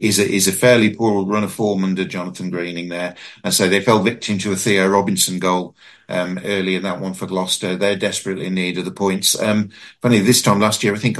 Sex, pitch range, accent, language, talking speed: male, 95-115 Hz, British, English, 240 wpm